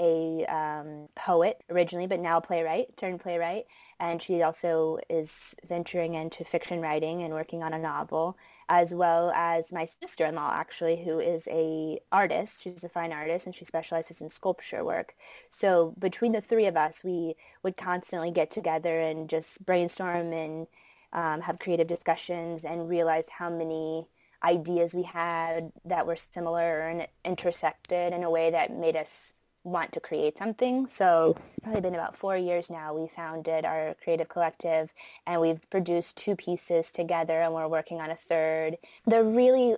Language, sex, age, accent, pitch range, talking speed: English, female, 20-39, American, 165-180 Hz, 165 wpm